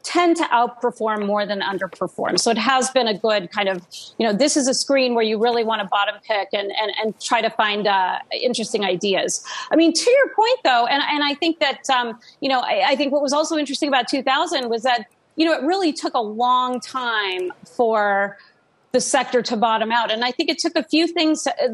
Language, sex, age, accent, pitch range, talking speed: English, female, 40-59, American, 210-265 Hz, 230 wpm